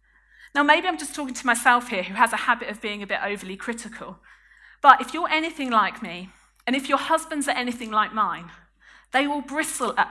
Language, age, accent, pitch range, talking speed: English, 50-69, British, 220-285 Hz, 215 wpm